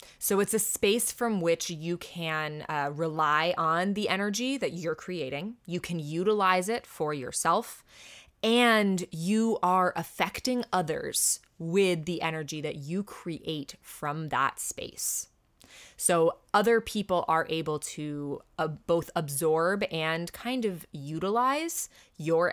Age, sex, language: 20-39, female, English